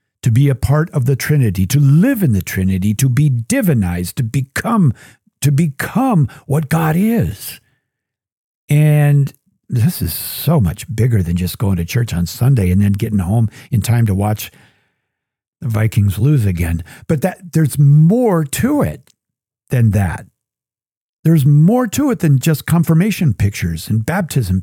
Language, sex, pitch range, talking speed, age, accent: English, male, 110-165 Hz, 160 wpm, 50-69, American